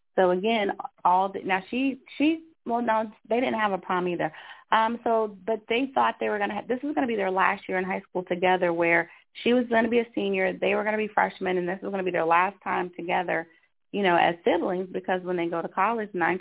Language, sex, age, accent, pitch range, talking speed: English, female, 30-49, American, 175-210 Hz, 270 wpm